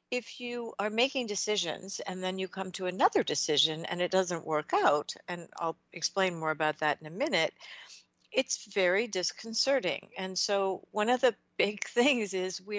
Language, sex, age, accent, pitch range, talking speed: English, female, 60-79, American, 185-245 Hz, 180 wpm